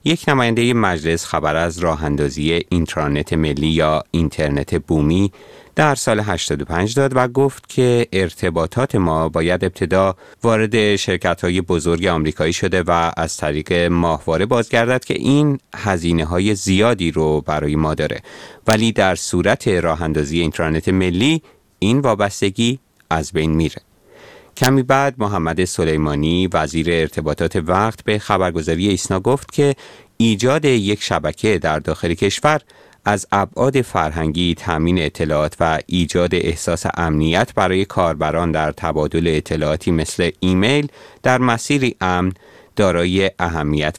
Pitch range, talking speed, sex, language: 80-110 Hz, 125 wpm, male, Persian